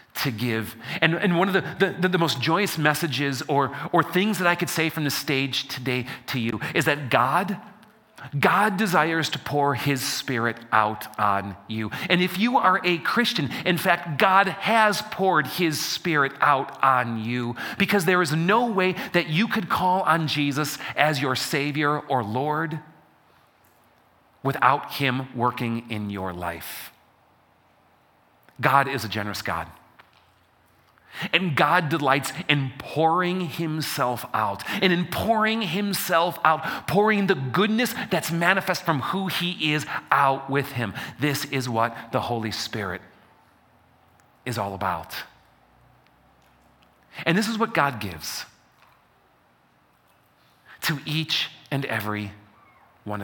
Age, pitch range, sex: 40-59, 115-175 Hz, male